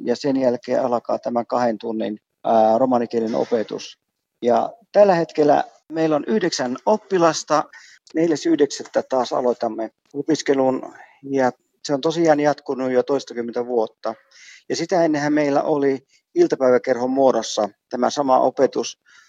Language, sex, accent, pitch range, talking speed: Finnish, male, native, 120-145 Hz, 120 wpm